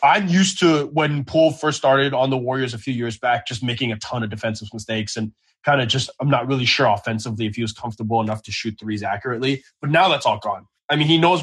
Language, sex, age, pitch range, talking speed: English, male, 20-39, 115-165 Hz, 250 wpm